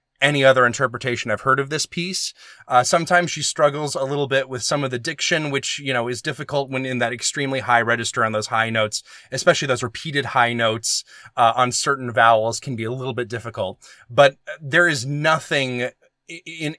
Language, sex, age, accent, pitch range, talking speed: English, male, 20-39, American, 115-140 Hz, 195 wpm